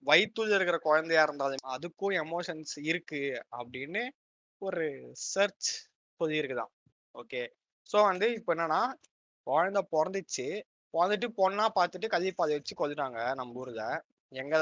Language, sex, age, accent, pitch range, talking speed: Tamil, male, 20-39, native, 130-175 Hz, 105 wpm